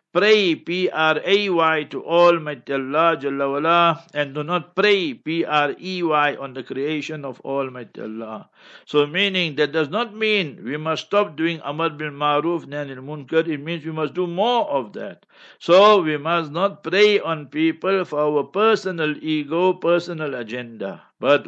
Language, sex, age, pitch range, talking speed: English, male, 60-79, 145-180 Hz, 150 wpm